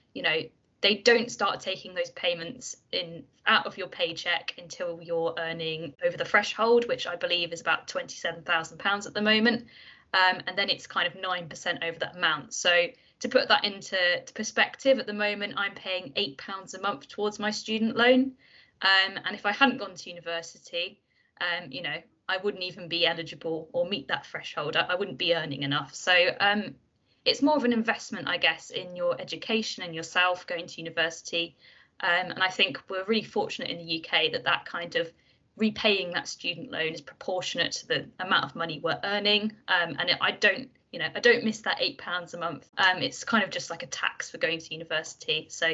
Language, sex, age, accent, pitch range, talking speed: English, female, 20-39, British, 170-220 Hz, 205 wpm